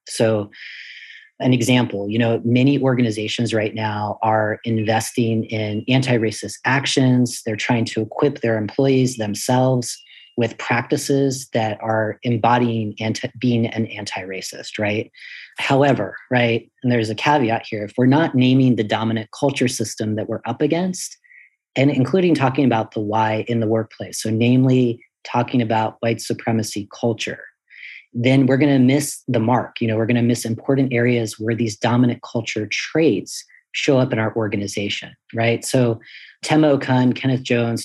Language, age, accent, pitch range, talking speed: English, 40-59, American, 110-130 Hz, 150 wpm